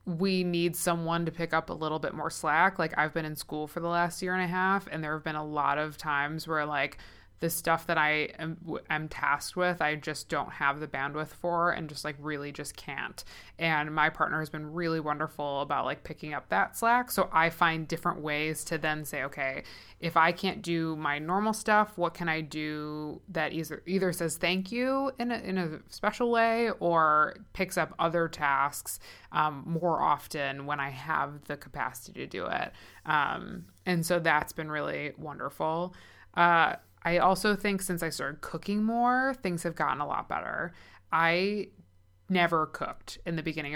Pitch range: 150-180 Hz